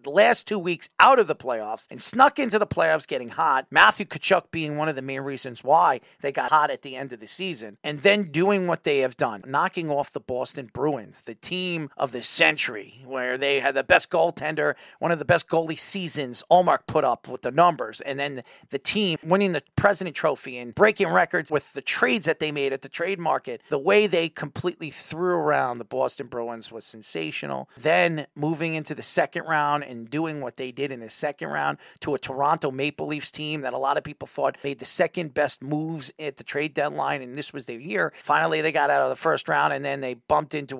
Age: 40-59